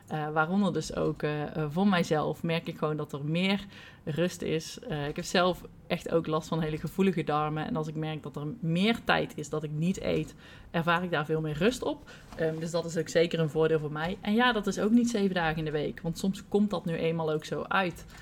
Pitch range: 160-195 Hz